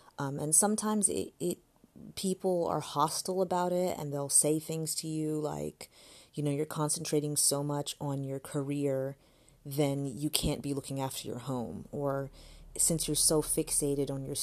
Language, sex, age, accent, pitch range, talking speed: English, female, 30-49, American, 140-155 Hz, 170 wpm